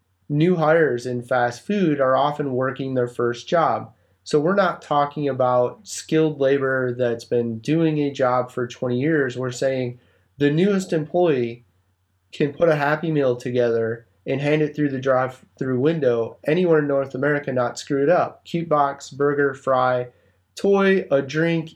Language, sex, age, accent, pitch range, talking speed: English, male, 30-49, American, 125-155 Hz, 165 wpm